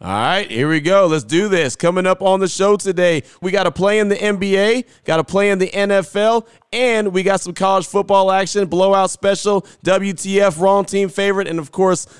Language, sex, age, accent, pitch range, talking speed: English, male, 30-49, American, 135-185 Hz, 210 wpm